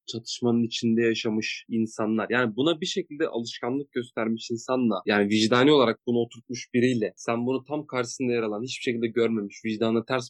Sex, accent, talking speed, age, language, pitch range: male, native, 165 wpm, 30-49, Turkish, 115-135 Hz